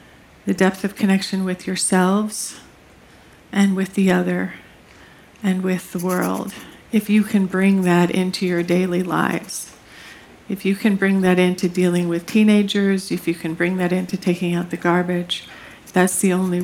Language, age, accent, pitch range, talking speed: English, 50-69, American, 180-205 Hz, 160 wpm